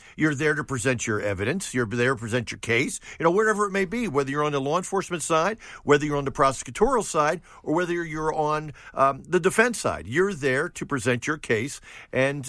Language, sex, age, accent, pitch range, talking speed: English, male, 50-69, American, 125-180 Hz, 220 wpm